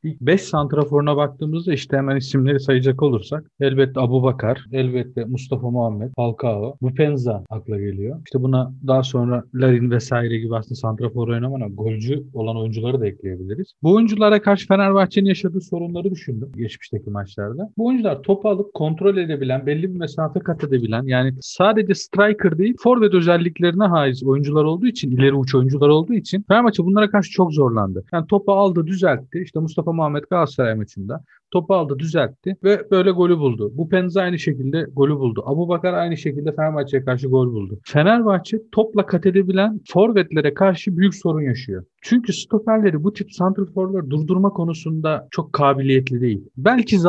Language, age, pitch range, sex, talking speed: Turkish, 40-59, 130-185 Hz, male, 160 wpm